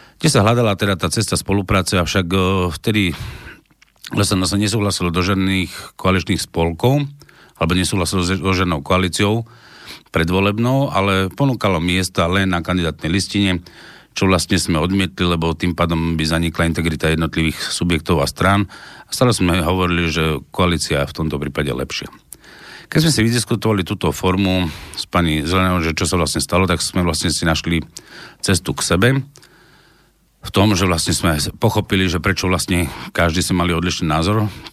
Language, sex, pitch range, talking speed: Slovak, male, 85-100 Hz, 155 wpm